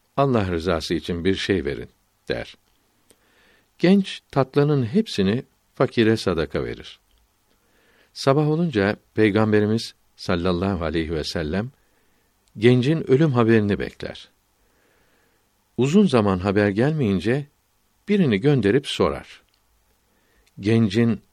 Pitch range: 95-120 Hz